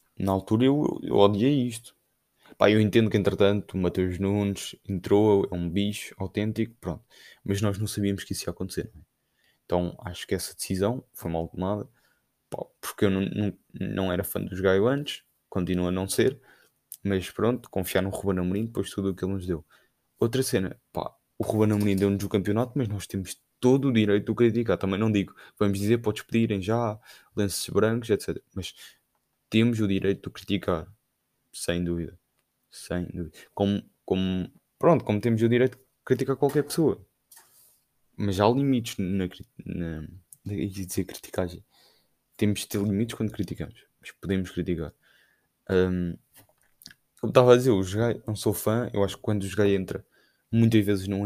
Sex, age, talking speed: male, 20-39, 180 wpm